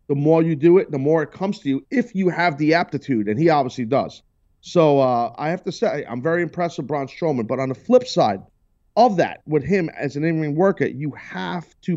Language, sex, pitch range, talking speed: English, male, 150-210 Hz, 240 wpm